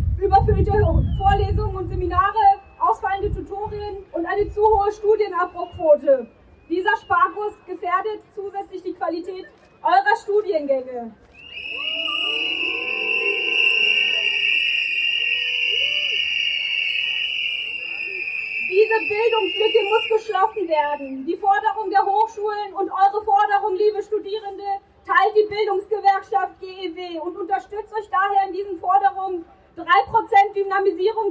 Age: 20-39